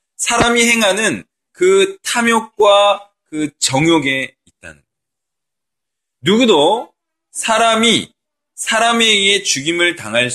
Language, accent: Korean, native